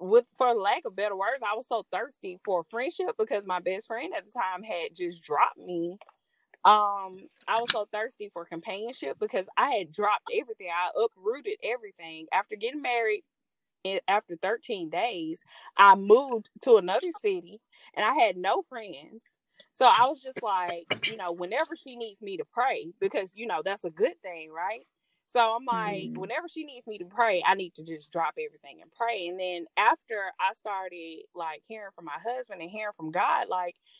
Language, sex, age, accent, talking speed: English, female, 20-39, American, 190 wpm